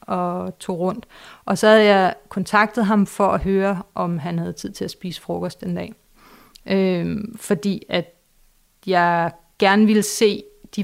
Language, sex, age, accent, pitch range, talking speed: Danish, female, 30-49, native, 180-210 Hz, 165 wpm